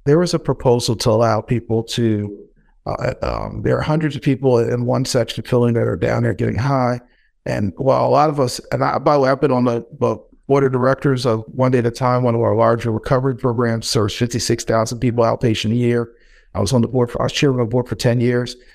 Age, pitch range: 50-69, 115-135 Hz